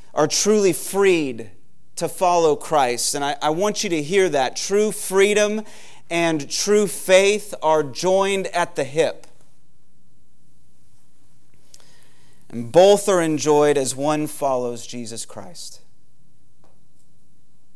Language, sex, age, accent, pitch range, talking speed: English, male, 30-49, American, 145-175 Hz, 110 wpm